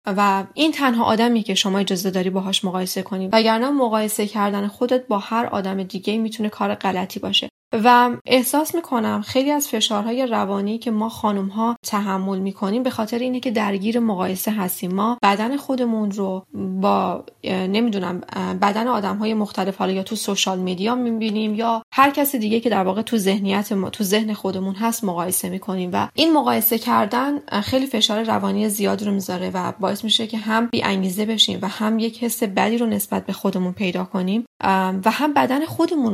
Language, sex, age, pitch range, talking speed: Persian, female, 10-29, 195-235 Hz, 175 wpm